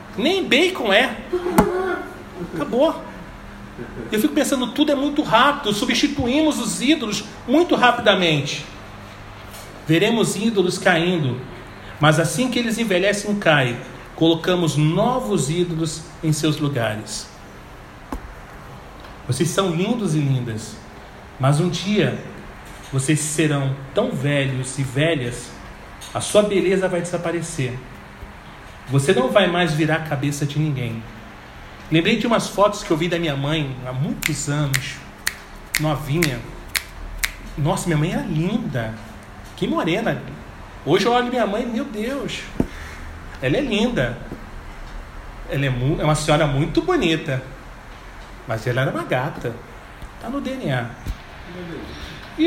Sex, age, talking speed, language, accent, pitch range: male, 40-59, 125 wpm, Portuguese, Brazilian, 130-210 Hz